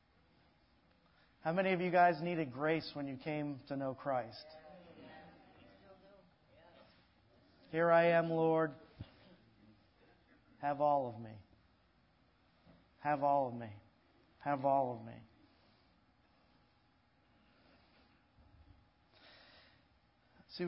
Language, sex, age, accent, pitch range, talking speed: English, male, 40-59, American, 120-165 Hz, 85 wpm